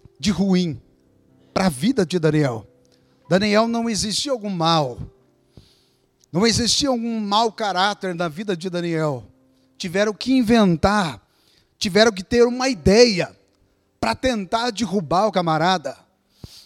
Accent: Brazilian